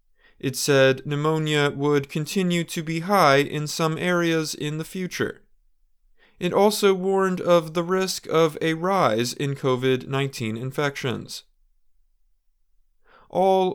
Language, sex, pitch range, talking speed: English, male, 135-165 Hz, 120 wpm